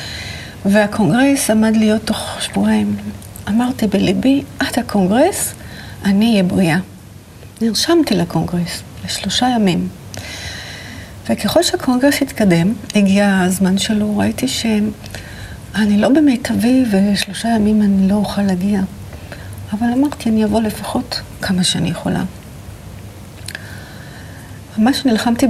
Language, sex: Hebrew, female